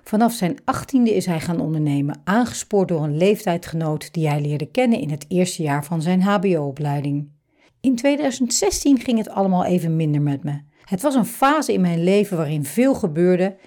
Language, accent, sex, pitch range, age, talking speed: Dutch, Dutch, female, 155-210 Hz, 60-79, 180 wpm